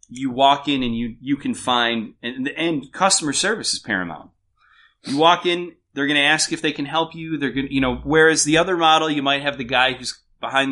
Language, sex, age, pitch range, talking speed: English, male, 30-49, 95-135 Hz, 230 wpm